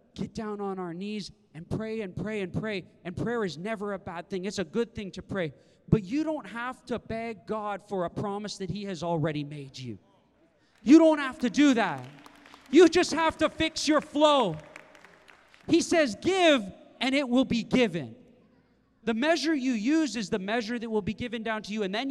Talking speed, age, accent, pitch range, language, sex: 210 wpm, 30-49, American, 165-240 Hz, English, male